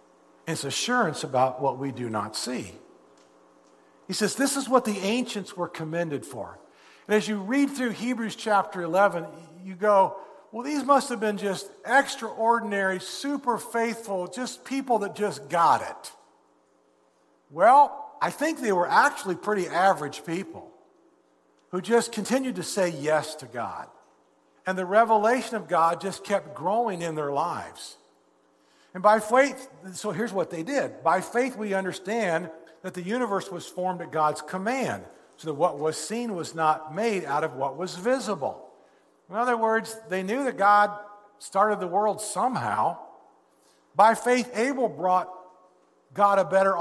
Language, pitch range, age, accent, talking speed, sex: English, 160-225 Hz, 50-69, American, 155 wpm, male